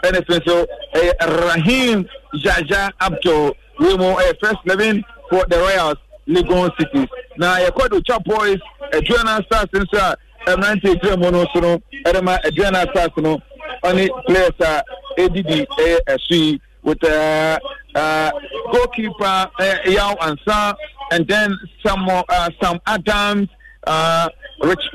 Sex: male